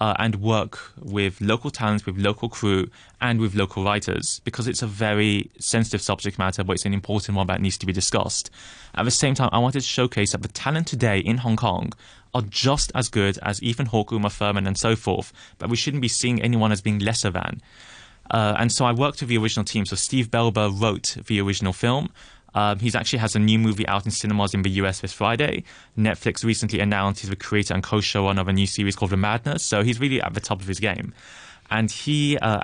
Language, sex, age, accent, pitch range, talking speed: English, male, 20-39, British, 100-120 Hz, 230 wpm